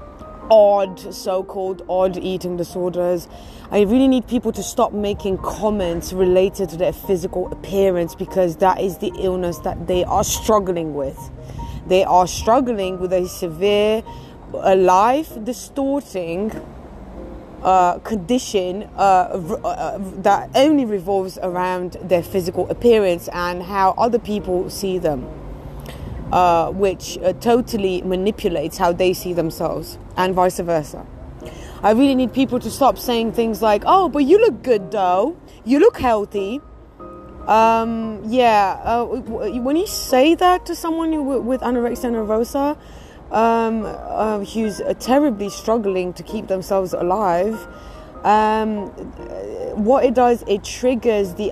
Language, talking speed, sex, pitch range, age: English, 130 wpm, female, 185-230 Hz, 20-39